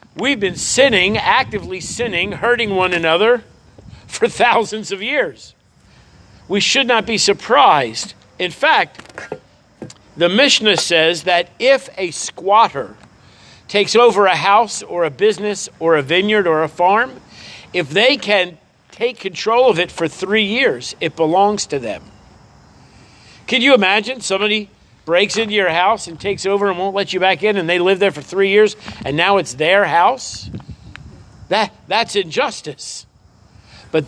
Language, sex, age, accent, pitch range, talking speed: English, male, 50-69, American, 170-225 Hz, 150 wpm